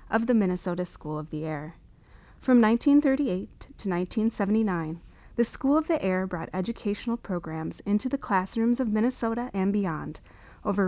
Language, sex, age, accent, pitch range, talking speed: English, female, 30-49, American, 175-230 Hz, 150 wpm